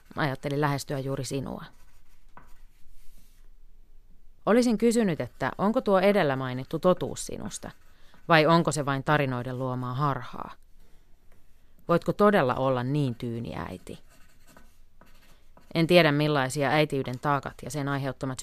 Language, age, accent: Finnish, 30-49, native